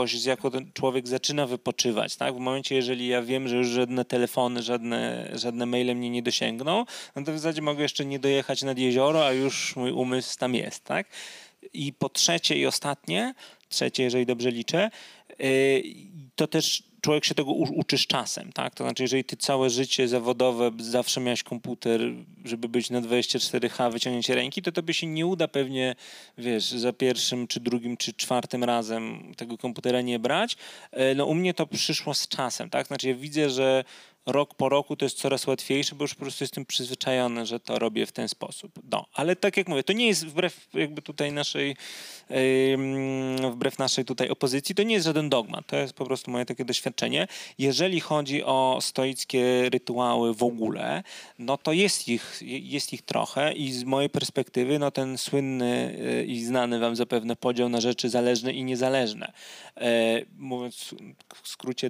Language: Polish